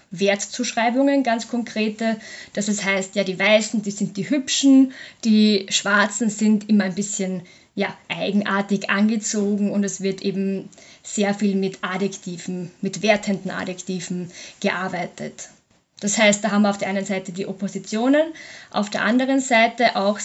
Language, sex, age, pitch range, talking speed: German, female, 20-39, 195-220 Hz, 145 wpm